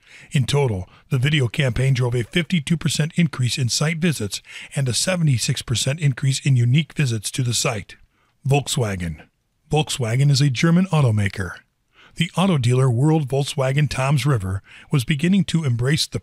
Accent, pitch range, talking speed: American, 120-155 Hz, 150 wpm